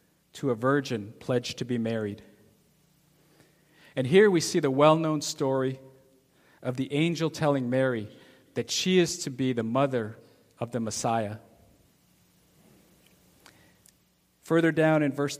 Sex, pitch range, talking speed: male, 120-155 Hz, 135 wpm